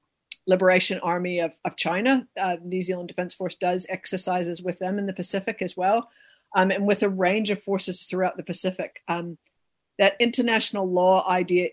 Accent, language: American, English